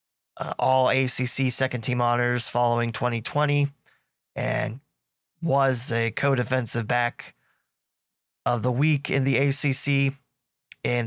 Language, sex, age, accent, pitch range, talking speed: English, male, 20-39, American, 115-135 Hz, 110 wpm